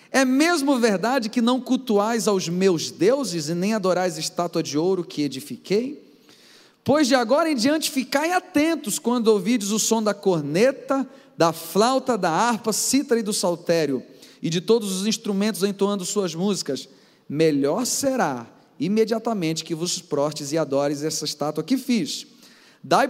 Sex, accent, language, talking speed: male, Brazilian, Portuguese, 155 wpm